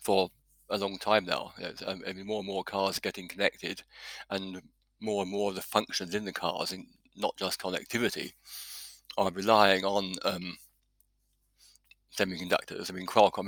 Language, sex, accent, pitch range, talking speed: English, male, British, 90-100 Hz, 170 wpm